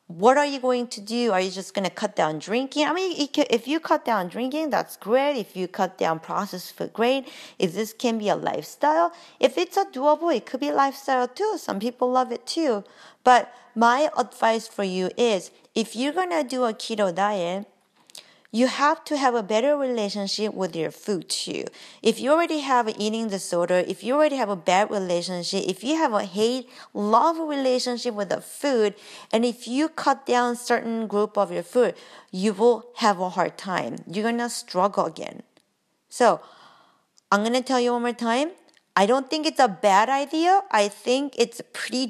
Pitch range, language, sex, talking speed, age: 195-260 Hz, English, female, 200 wpm, 40-59